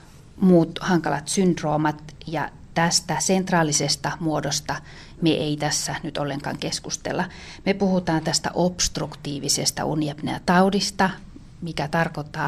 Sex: female